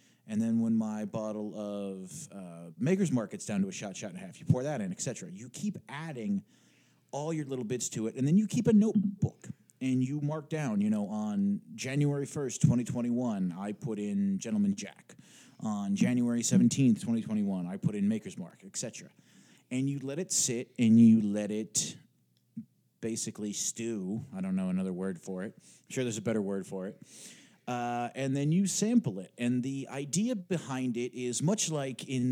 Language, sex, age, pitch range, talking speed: English, male, 30-49, 110-185 Hz, 195 wpm